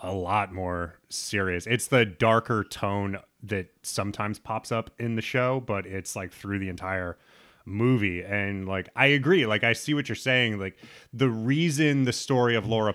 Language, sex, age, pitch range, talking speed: English, male, 30-49, 100-125 Hz, 180 wpm